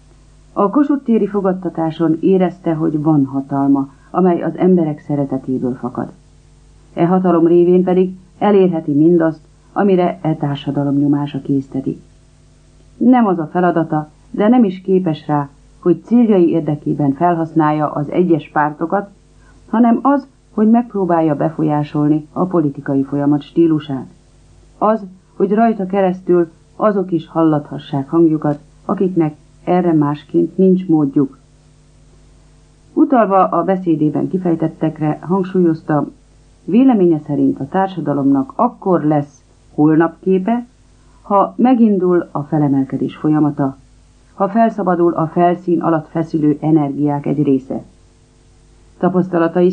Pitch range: 145-185 Hz